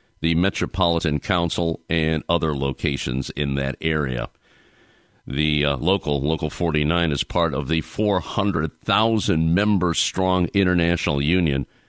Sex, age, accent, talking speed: male, 50-69, American, 110 wpm